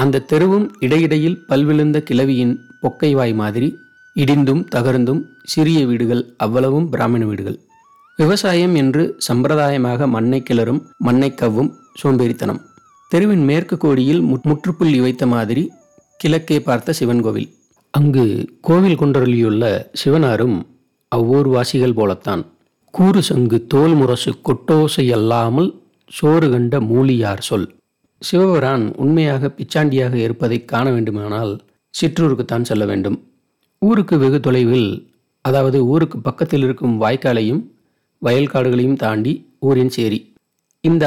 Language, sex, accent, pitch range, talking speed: Tamil, male, native, 120-155 Hz, 100 wpm